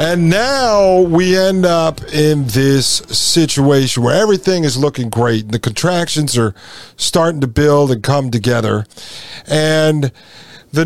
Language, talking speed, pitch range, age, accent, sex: English, 135 wpm, 125-155 Hz, 50-69, American, male